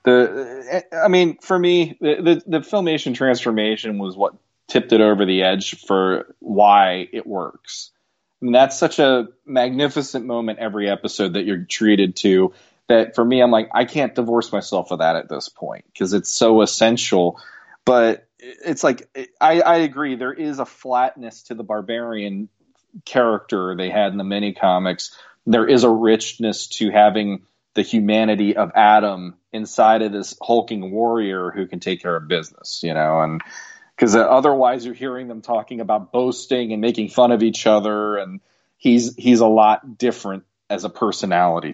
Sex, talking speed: male, 170 wpm